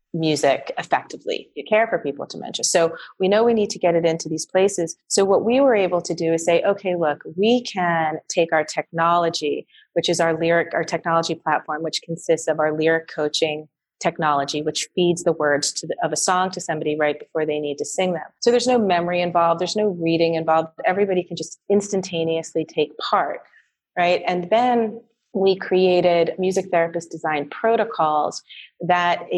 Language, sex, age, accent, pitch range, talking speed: English, female, 30-49, American, 160-185 Hz, 190 wpm